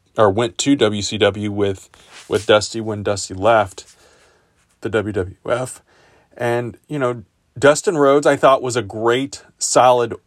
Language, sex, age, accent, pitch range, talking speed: English, male, 30-49, American, 100-120 Hz, 135 wpm